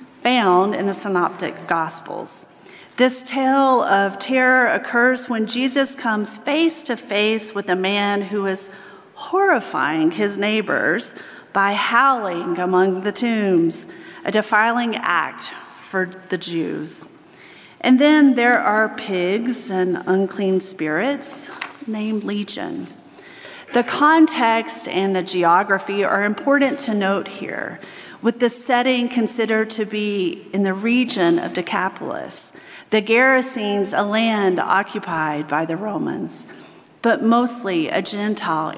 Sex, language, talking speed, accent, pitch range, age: female, English, 120 wpm, American, 185-245 Hz, 40-59